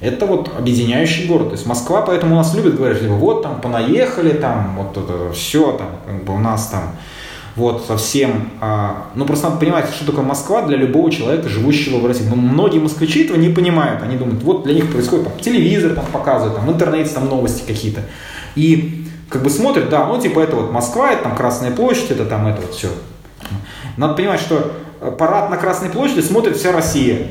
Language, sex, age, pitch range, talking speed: Russian, male, 20-39, 120-165 Hz, 200 wpm